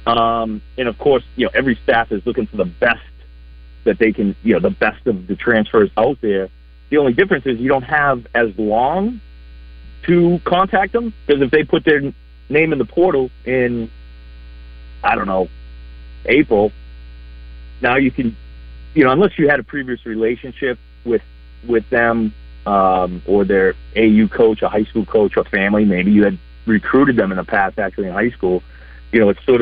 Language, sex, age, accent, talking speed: English, male, 40-59, American, 185 wpm